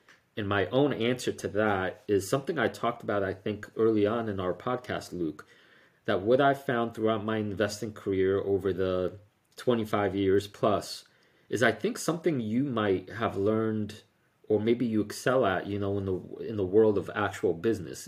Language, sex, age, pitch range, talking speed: English, male, 30-49, 95-115 Hz, 180 wpm